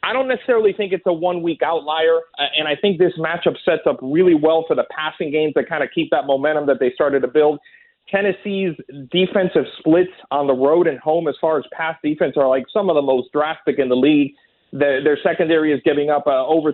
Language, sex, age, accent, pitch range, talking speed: English, male, 40-59, American, 145-185 Hz, 220 wpm